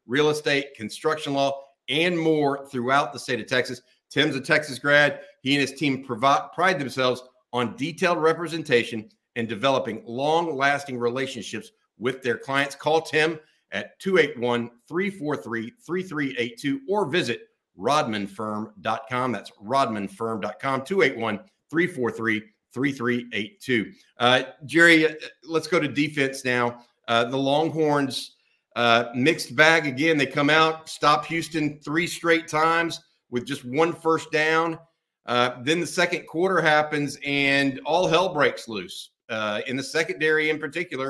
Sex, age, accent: male, 50-69, American